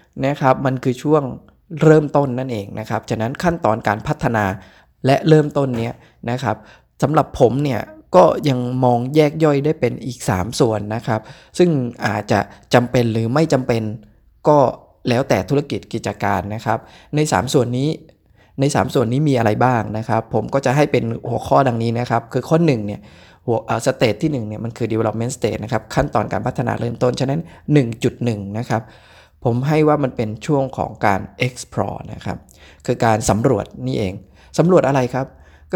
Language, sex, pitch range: Thai, male, 110-140 Hz